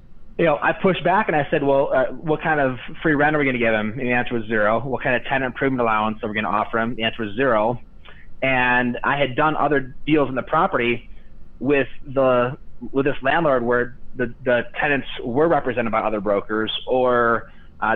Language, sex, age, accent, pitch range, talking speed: English, male, 30-49, American, 110-135 Hz, 215 wpm